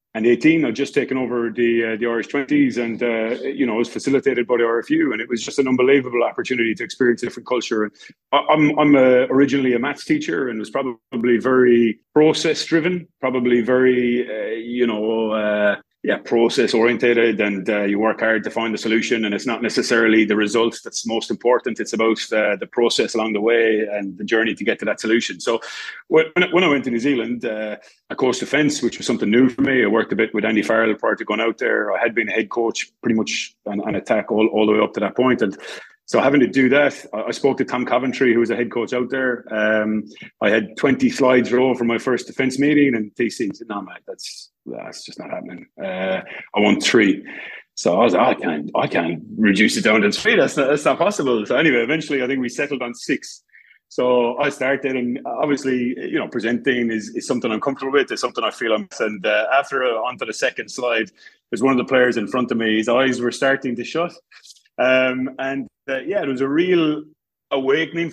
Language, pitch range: English, 115-135 Hz